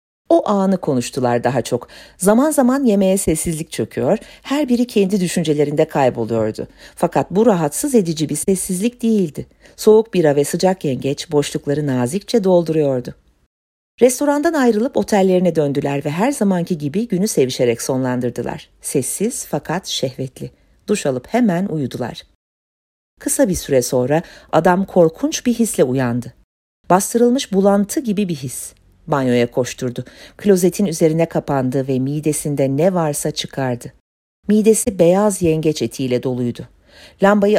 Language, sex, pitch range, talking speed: Turkish, female, 135-200 Hz, 125 wpm